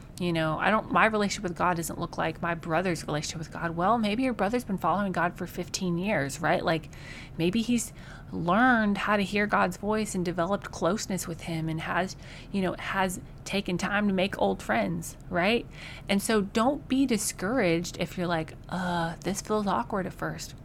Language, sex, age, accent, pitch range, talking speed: English, female, 30-49, American, 165-205 Hz, 195 wpm